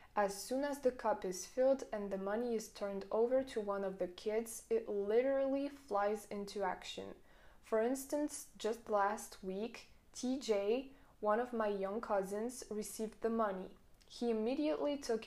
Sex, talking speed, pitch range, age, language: female, 155 wpm, 200-235 Hz, 20-39, French